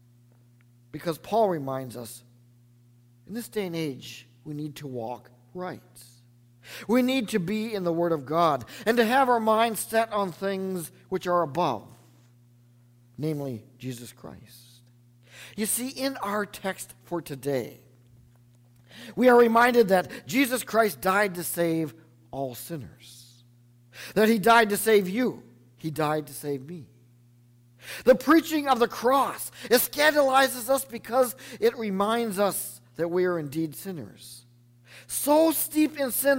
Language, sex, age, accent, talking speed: English, male, 50-69, American, 145 wpm